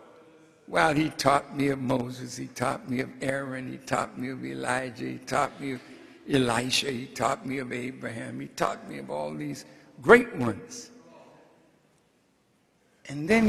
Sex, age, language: male, 60-79, English